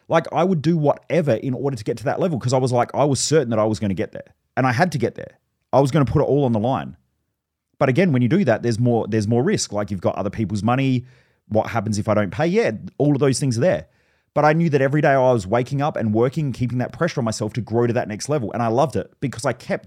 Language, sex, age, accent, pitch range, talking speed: English, male, 30-49, Australian, 120-160 Hz, 310 wpm